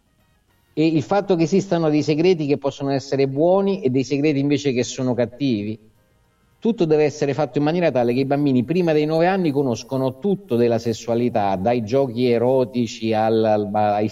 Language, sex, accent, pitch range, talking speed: Italian, male, native, 120-150 Hz, 180 wpm